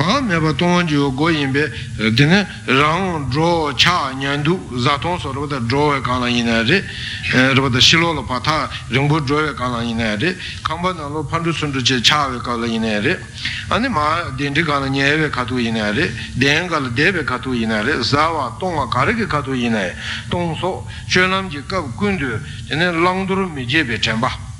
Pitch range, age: 115-155 Hz, 60-79